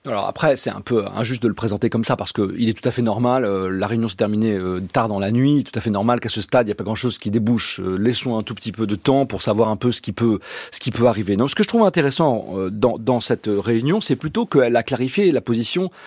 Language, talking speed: French, 295 wpm